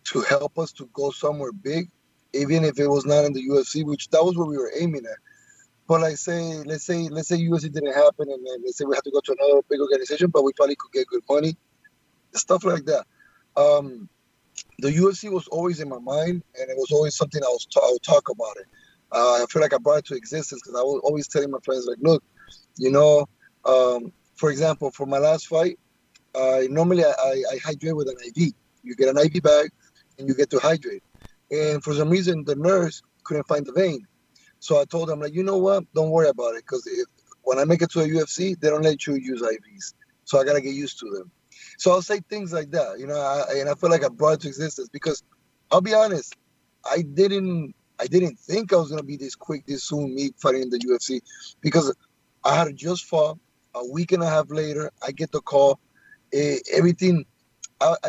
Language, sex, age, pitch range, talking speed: English, male, 30-49, 140-175 Hz, 230 wpm